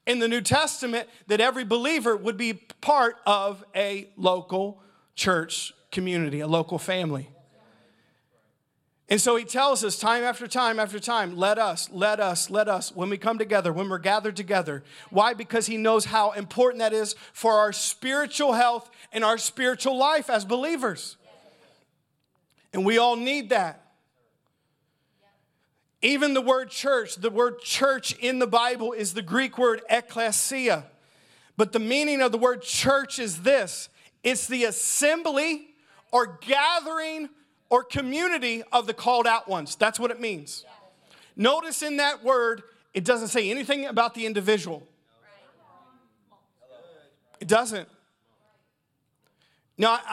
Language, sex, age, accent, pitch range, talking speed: English, male, 40-59, American, 205-255 Hz, 140 wpm